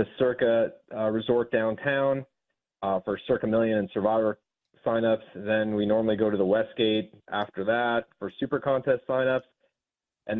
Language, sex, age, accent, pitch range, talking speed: English, male, 30-49, American, 95-115 Hz, 150 wpm